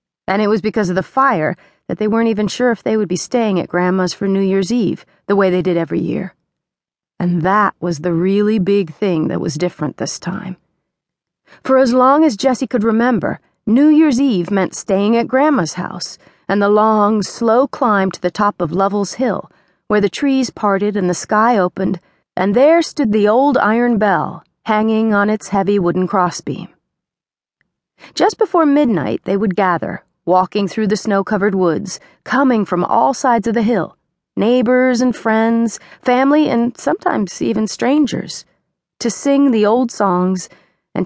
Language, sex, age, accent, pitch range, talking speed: English, female, 40-59, American, 185-250 Hz, 175 wpm